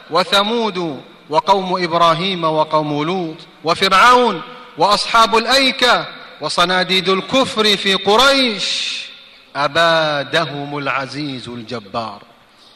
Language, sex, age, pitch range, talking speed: Arabic, male, 30-49, 180-240 Hz, 70 wpm